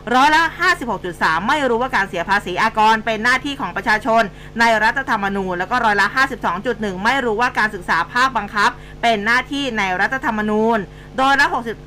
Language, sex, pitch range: Thai, female, 205-250 Hz